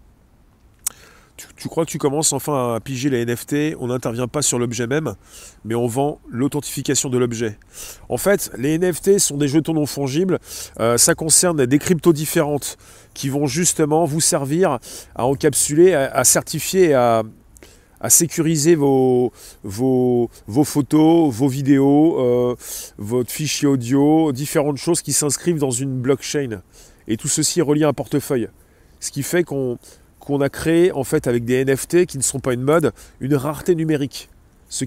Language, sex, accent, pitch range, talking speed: French, male, French, 125-155 Hz, 165 wpm